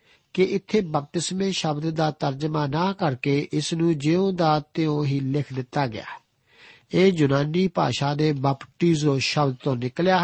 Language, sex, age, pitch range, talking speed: Punjabi, male, 50-69, 140-175 Hz, 145 wpm